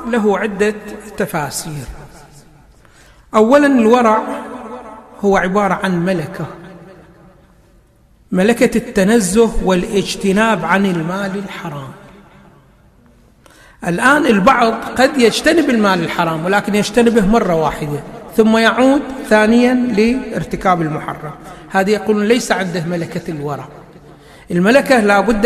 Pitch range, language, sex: 180-230 Hz, Arabic, male